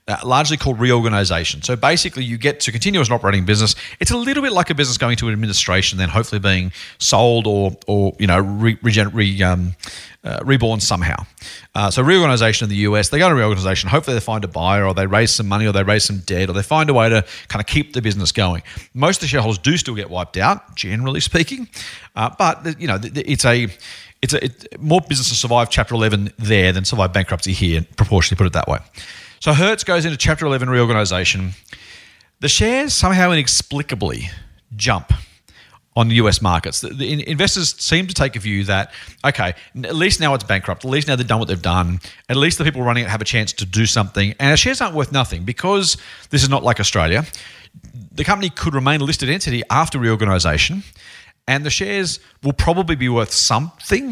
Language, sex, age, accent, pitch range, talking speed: English, male, 40-59, Australian, 100-145 Hz, 215 wpm